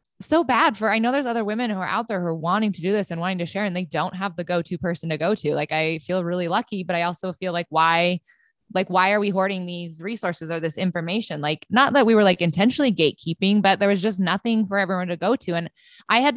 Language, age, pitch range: English, 20-39, 175-210 Hz